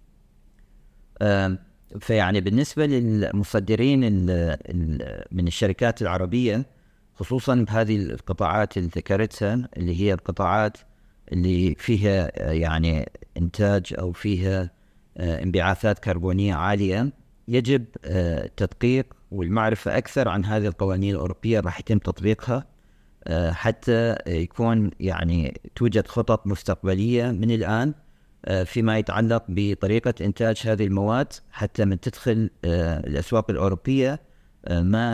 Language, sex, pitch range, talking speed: Arabic, male, 90-115 Hz, 90 wpm